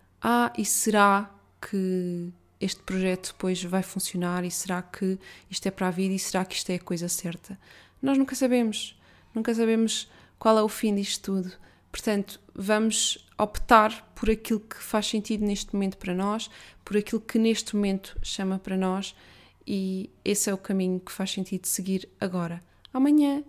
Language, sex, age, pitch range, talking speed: Portuguese, female, 20-39, 190-215 Hz, 170 wpm